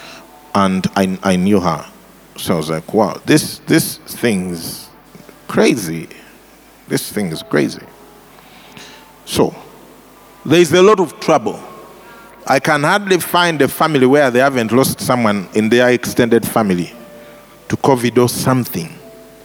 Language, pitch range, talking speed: English, 115-150 Hz, 135 wpm